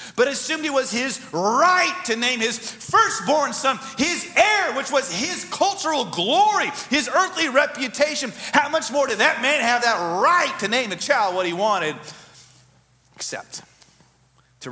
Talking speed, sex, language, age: 160 wpm, male, English, 40-59